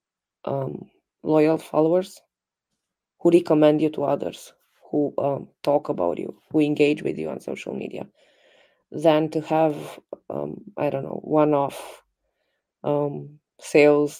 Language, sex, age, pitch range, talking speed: English, female, 20-39, 150-170 Hz, 125 wpm